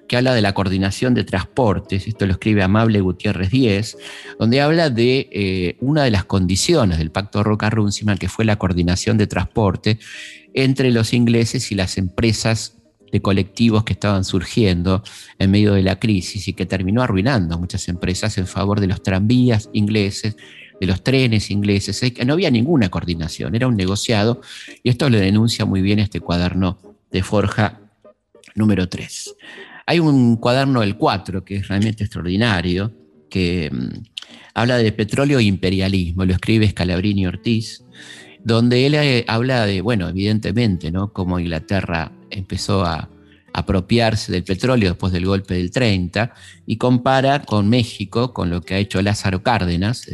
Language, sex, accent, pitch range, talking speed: Spanish, male, Argentinian, 95-115 Hz, 155 wpm